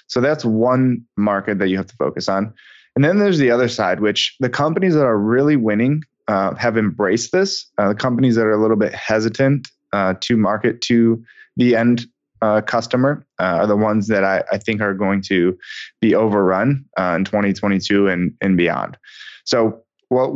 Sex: male